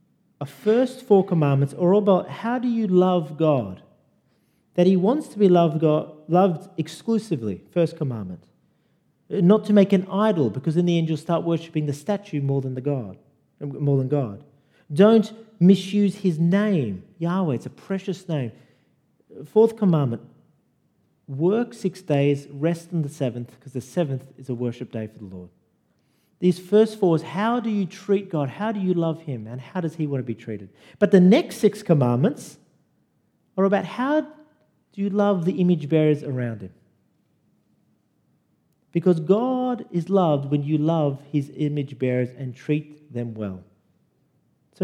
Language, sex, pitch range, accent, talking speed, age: English, male, 140-190 Hz, Australian, 165 wpm, 40-59